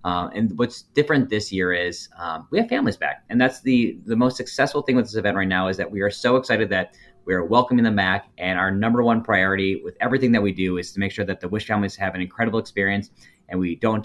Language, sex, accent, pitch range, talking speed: English, male, American, 90-115 Hz, 260 wpm